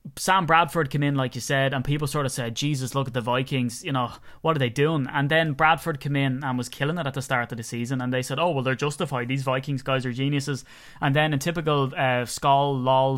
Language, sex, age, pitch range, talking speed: English, male, 20-39, 125-145 Hz, 260 wpm